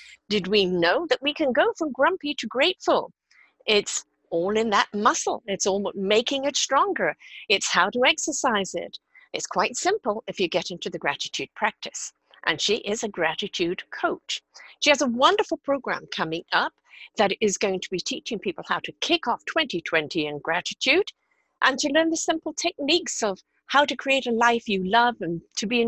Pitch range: 205-320 Hz